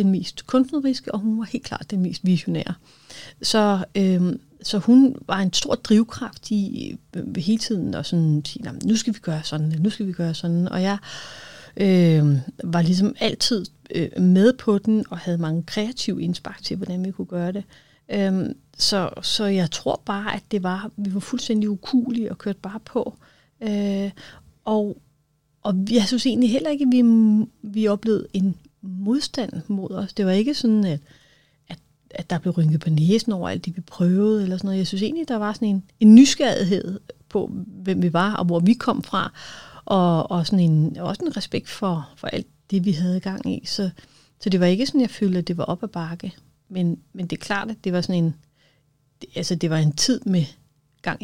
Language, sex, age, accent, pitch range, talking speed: Danish, female, 30-49, native, 165-215 Hz, 205 wpm